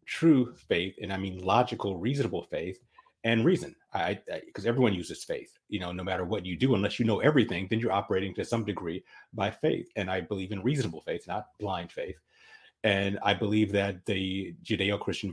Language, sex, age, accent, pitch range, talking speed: English, male, 30-49, American, 95-115 Hz, 190 wpm